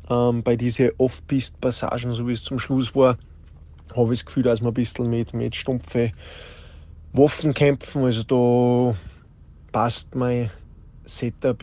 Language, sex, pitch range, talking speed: German, male, 110-130 Hz, 145 wpm